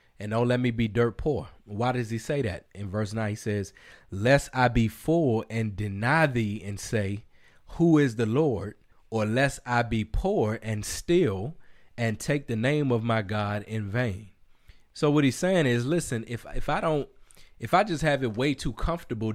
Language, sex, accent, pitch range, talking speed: English, male, American, 110-130 Hz, 200 wpm